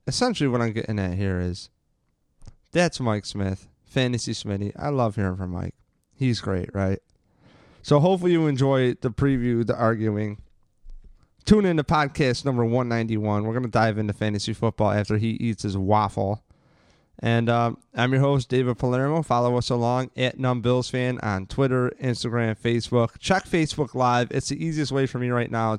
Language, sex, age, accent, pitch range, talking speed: English, male, 30-49, American, 105-135 Hz, 170 wpm